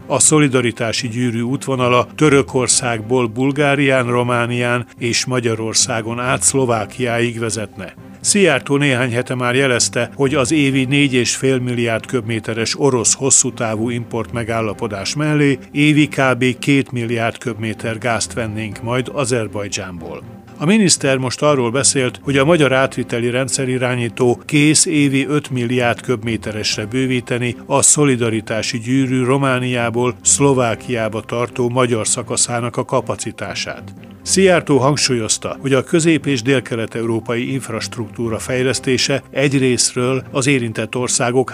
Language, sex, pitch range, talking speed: Hungarian, male, 115-135 Hz, 115 wpm